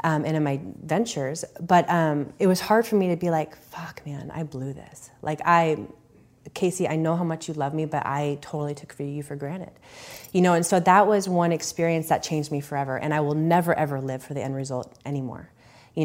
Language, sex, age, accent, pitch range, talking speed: English, female, 30-49, American, 145-175 Hz, 230 wpm